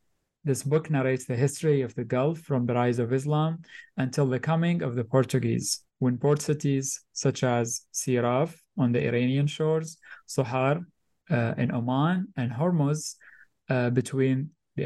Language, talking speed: English, 155 wpm